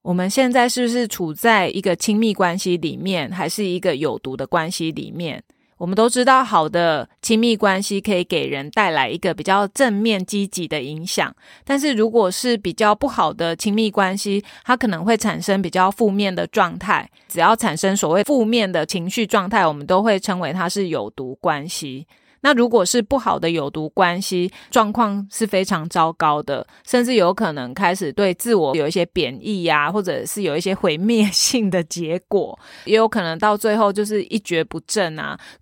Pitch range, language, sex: 175-225 Hz, Chinese, female